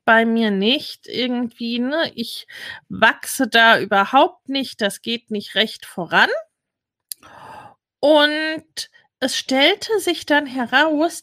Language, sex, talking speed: German, female, 110 wpm